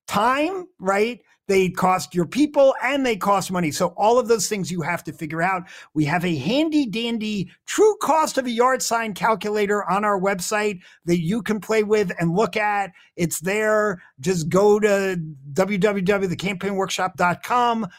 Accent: American